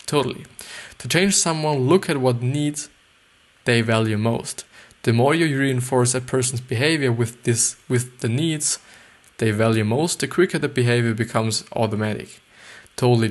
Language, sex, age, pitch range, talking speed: English, male, 20-39, 115-140 Hz, 150 wpm